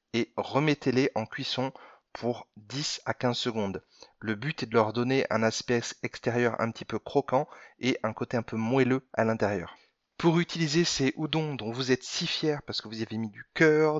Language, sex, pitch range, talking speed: French, male, 115-145 Hz, 195 wpm